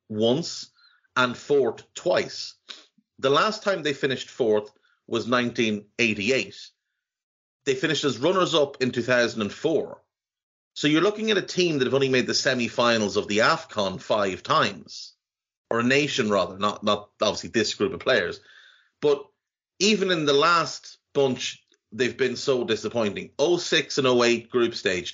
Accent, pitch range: Irish, 115-170 Hz